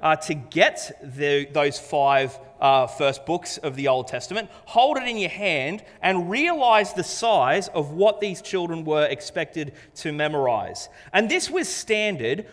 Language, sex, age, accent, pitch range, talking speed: English, male, 30-49, Australian, 150-210 Hz, 160 wpm